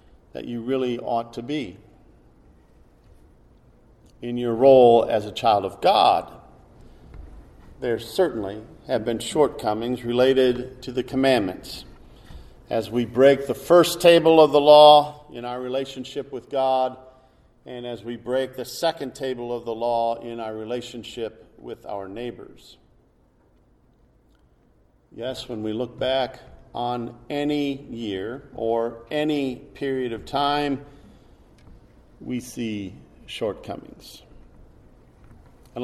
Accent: American